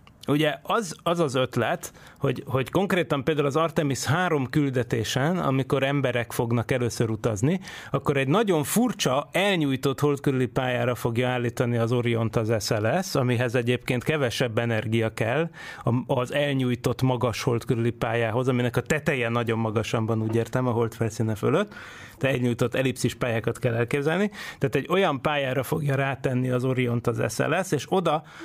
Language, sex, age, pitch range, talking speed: Hungarian, male, 30-49, 120-145 Hz, 145 wpm